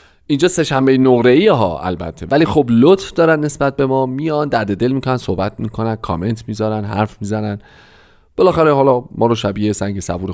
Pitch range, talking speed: 100-160 Hz, 175 wpm